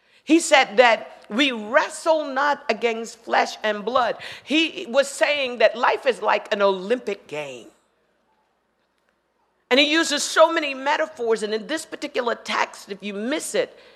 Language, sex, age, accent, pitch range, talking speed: English, female, 50-69, American, 210-305 Hz, 150 wpm